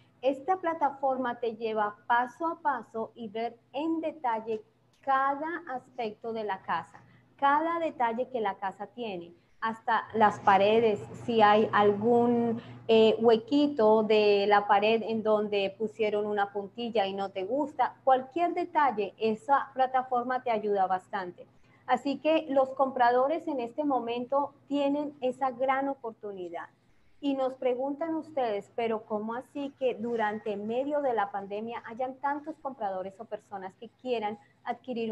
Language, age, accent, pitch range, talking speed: Spanish, 30-49, American, 210-265 Hz, 140 wpm